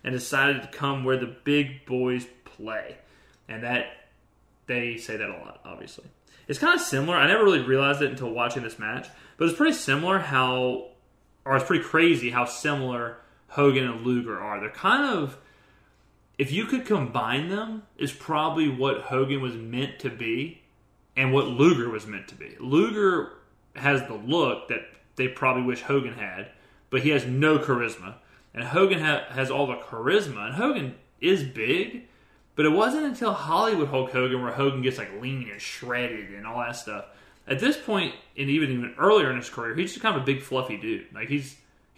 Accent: American